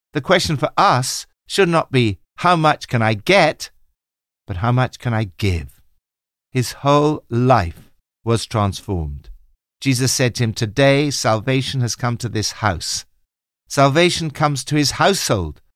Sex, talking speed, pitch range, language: male, 150 wpm, 85-130 Hz, English